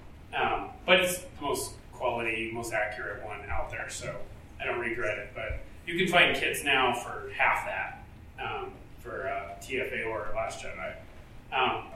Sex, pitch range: male, 115-155 Hz